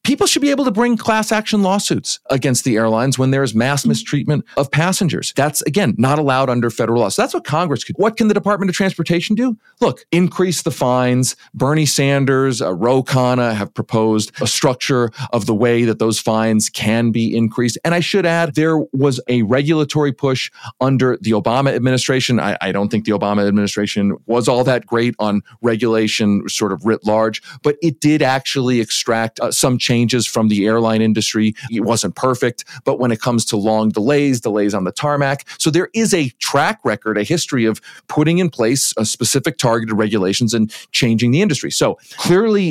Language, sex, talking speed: English, male, 195 wpm